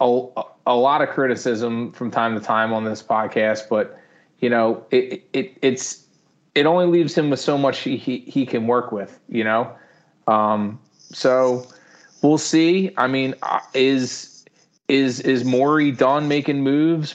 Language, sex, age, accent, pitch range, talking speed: English, male, 30-49, American, 115-135 Hz, 160 wpm